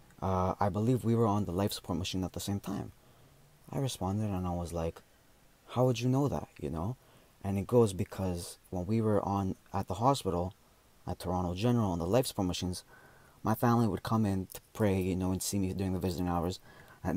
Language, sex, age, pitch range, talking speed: English, male, 20-39, 95-125 Hz, 215 wpm